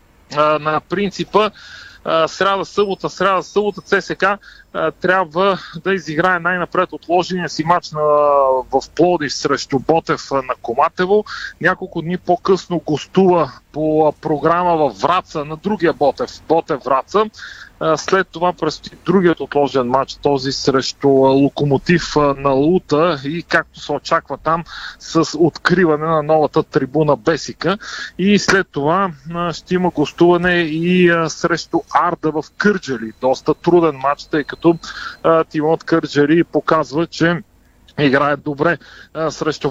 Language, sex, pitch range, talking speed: Bulgarian, male, 150-180 Hz, 120 wpm